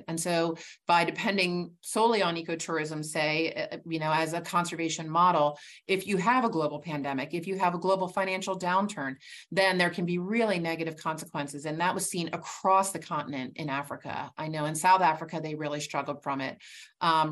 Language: English